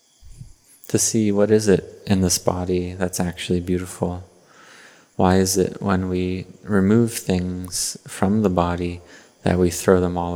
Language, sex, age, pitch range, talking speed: English, male, 30-49, 90-100 Hz, 150 wpm